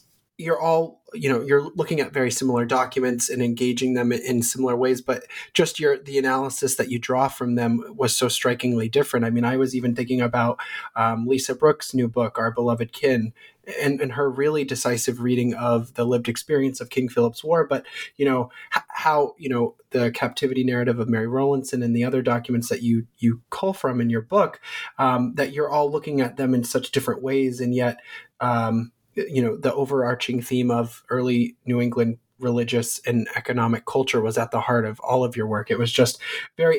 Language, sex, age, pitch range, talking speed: English, male, 30-49, 120-135 Hz, 200 wpm